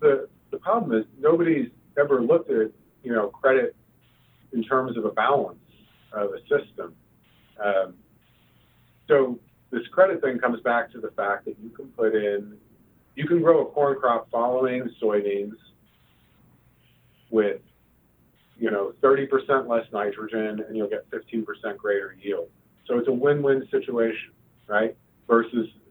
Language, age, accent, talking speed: English, 40-59, American, 140 wpm